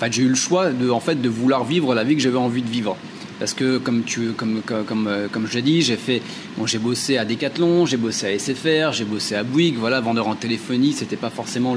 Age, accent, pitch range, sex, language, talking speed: 30-49, French, 120-160 Hz, male, French, 255 wpm